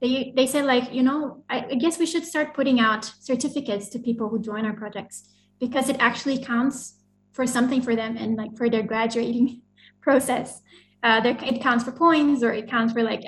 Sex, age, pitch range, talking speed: female, 20-39, 225-255 Hz, 205 wpm